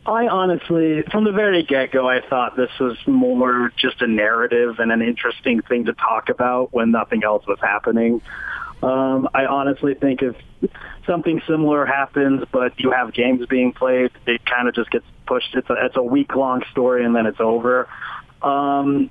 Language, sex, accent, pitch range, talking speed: English, male, American, 125-160 Hz, 180 wpm